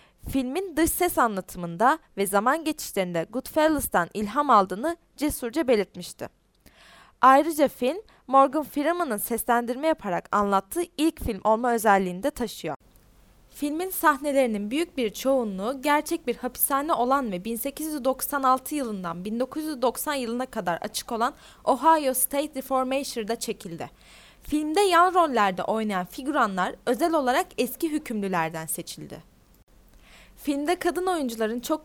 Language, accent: Hebrew, Turkish